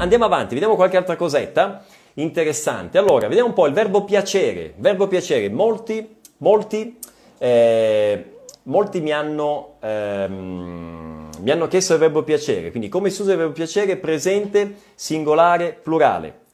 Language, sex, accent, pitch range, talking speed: Italian, male, native, 140-205 Hz, 140 wpm